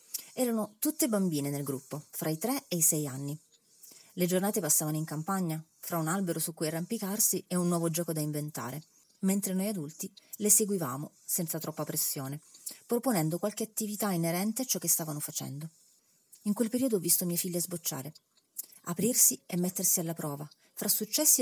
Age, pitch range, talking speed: 30-49, 160-215 Hz, 170 wpm